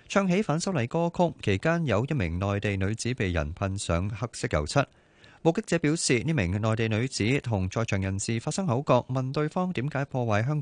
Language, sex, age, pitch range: Chinese, male, 30-49, 95-140 Hz